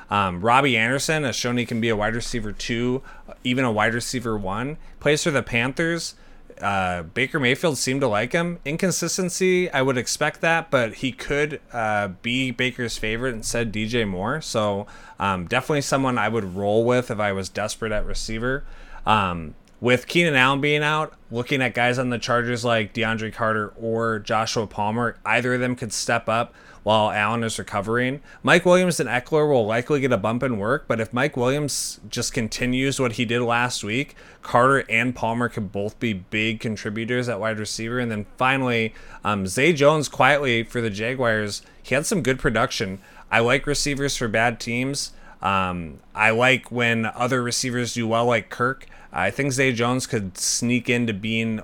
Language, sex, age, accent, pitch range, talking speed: English, male, 30-49, American, 110-130 Hz, 185 wpm